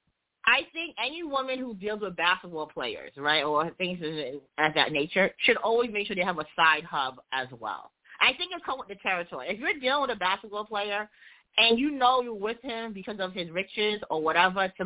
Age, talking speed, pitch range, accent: 30-49, 215 wpm, 185-245 Hz, American